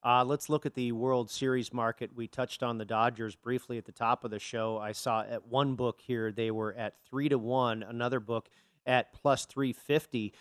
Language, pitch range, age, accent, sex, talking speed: English, 115-150 Hz, 40-59, American, male, 215 wpm